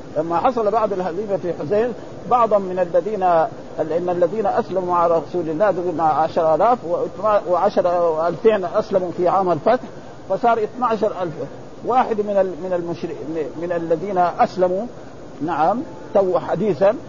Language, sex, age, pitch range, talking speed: Arabic, male, 50-69, 180-225 Hz, 125 wpm